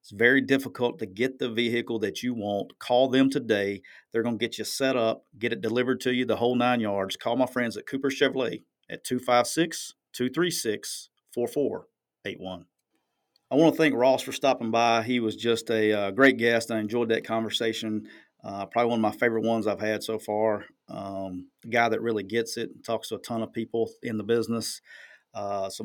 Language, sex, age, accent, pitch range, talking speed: English, male, 40-59, American, 110-130 Hz, 200 wpm